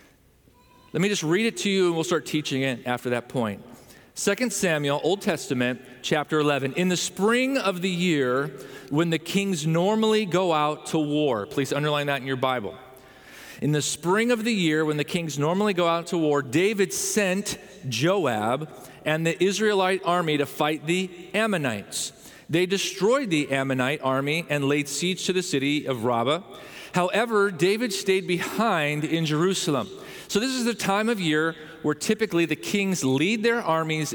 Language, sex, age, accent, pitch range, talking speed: English, male, 40-59, American, 145-185 Hz, 175 wpm